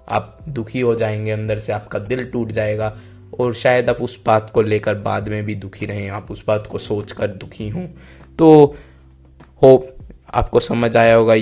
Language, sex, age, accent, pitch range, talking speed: Hindi, male, 20-39, native, 110-140 Hz, 185 wpm